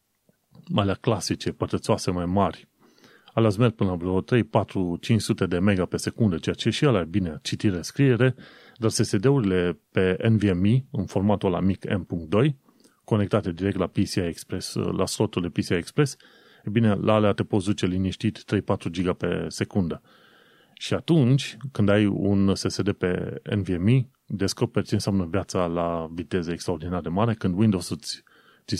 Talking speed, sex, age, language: 150 wpm, male, 30-49, Romanian